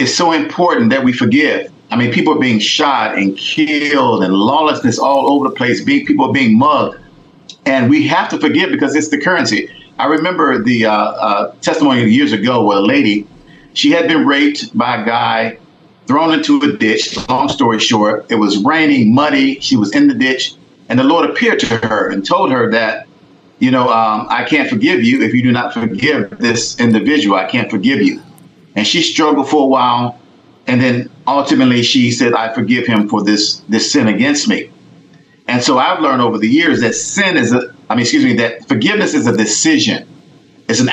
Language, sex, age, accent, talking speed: English, male, 50-69, American, 200 wpm